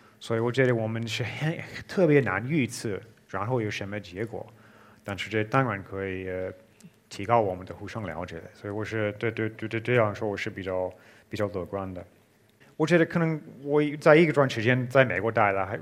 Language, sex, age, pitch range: Chinese, male, 30-49, 105-130 Hz